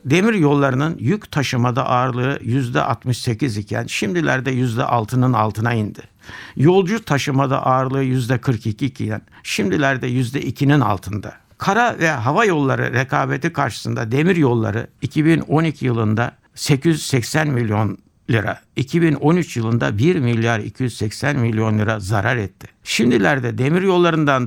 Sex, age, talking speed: male, 60-79, 110 wpm